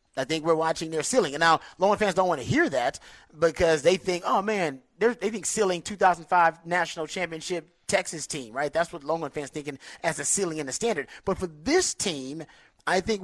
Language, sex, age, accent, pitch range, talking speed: English, male, 30-49, American, 150-195 Hz, 215 wpm